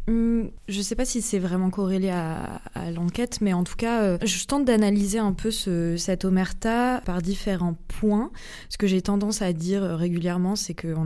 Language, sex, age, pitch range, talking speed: French, female, 20-39, 180-210 Hz, 185 wpm